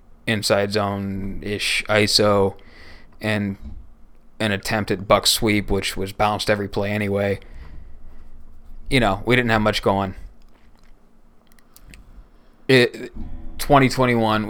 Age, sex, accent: 20-39, male, American